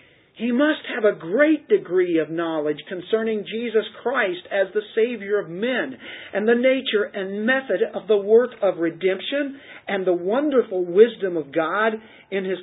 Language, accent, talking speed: English, American, 160 wpm